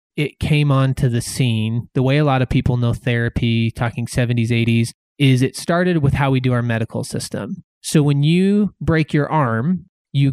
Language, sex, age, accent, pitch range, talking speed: English, male, 20-39, American, 125-160 Hz, 190 wpm